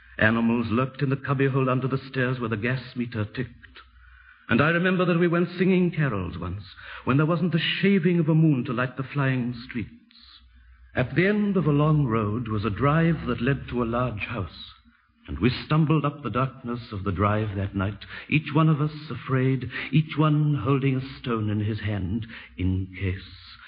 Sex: male